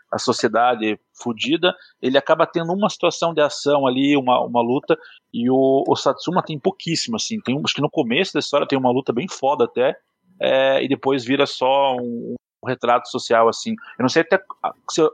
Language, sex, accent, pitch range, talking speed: Portuguese, male, Brazilian, 120-160 Hz, 195 wpm